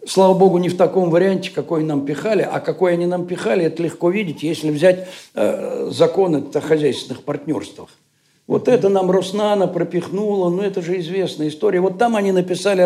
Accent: native